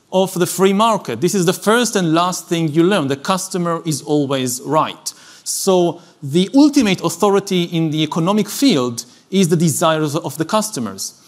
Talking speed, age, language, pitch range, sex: 170 wpm, 40-59, English, 160-210 Hz, male